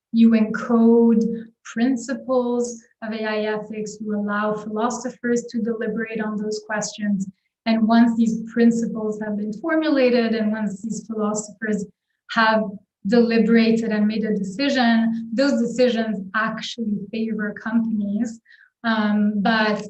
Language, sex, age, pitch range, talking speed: English, female, 20-39, 205-230 Hz, 115 wpm